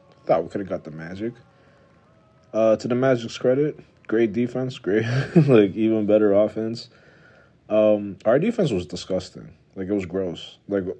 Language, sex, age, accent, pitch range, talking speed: English, male, 30-49, American, 90-120 Hz, 160 wpm